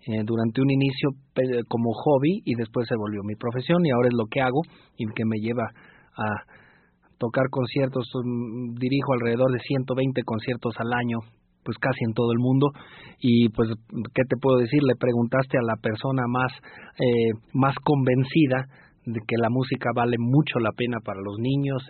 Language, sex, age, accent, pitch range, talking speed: Spanish, male, 40-59, Mexican, 120-140 Hz, 175 wpm